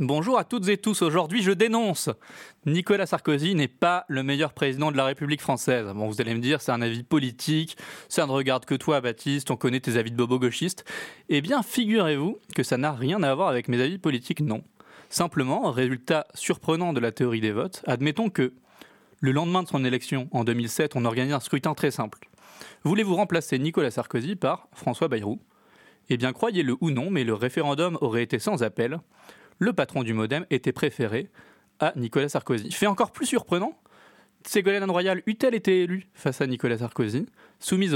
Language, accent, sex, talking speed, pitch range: French, French, male, 190 wpm, 125-170 Hz